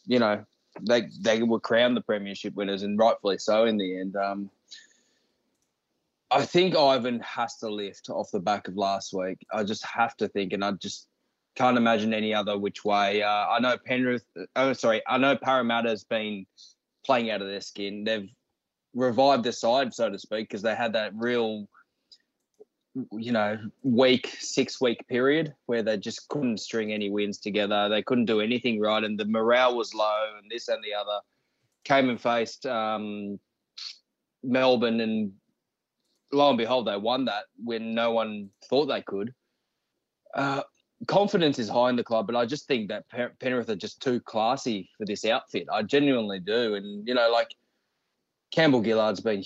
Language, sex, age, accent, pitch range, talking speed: English, male, 20-39, Australian, 105-125 Hz, 175 wpm